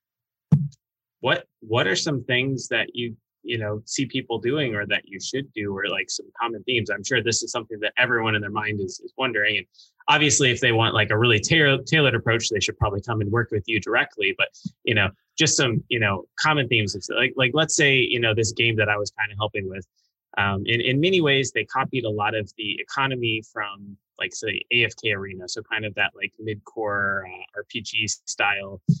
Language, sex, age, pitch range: English, male, 20-39, 105-135 Hz